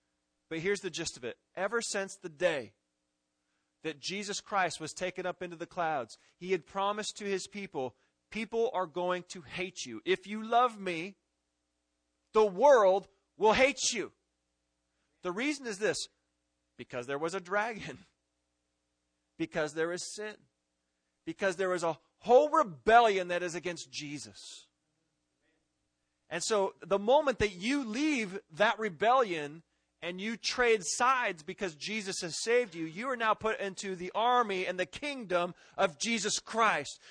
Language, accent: English, American